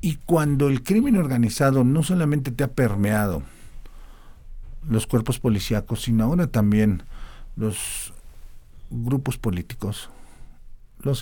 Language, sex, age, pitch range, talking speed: Spanish, male, 50-69, 110-150 Hz, 105 wpm